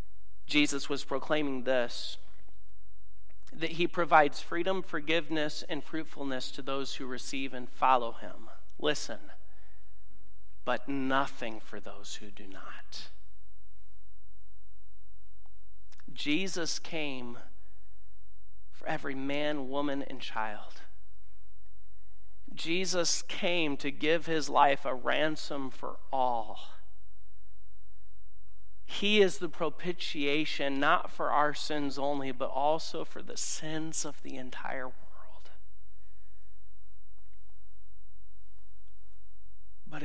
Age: 40-59